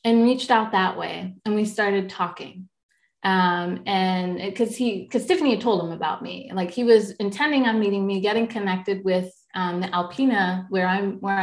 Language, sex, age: English, female, 30-49